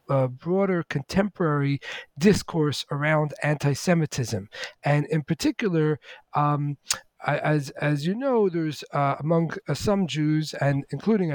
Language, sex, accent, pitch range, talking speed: English, male, American, 140-165 Hz, 120 wpm